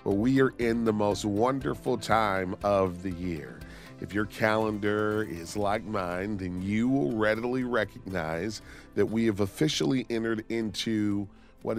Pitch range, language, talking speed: 90-110 Hz, English, 150 wpm